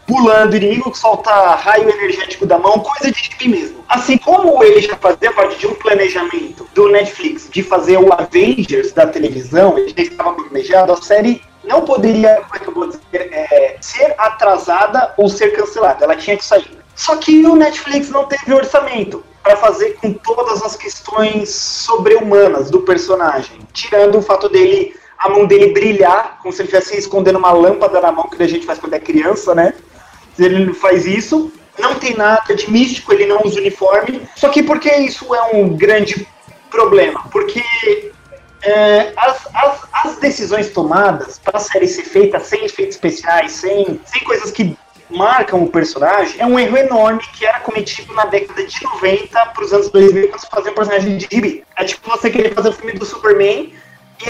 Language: Portuguese